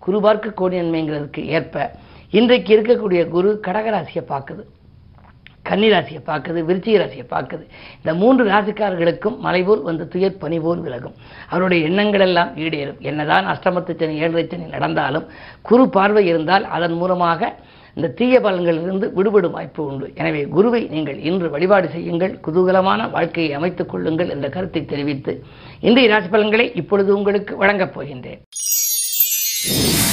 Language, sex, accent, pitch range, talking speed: Tamil, female, native, 165-205 Hz, 120 wpm